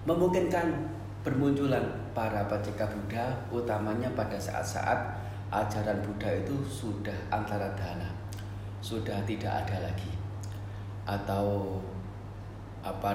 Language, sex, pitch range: Indonesian, male, 100-105 Hz